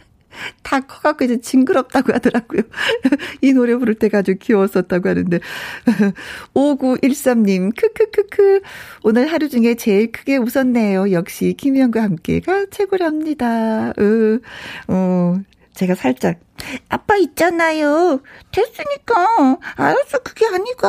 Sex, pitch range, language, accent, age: female, 190-275 Hz, Korean, native, 40-59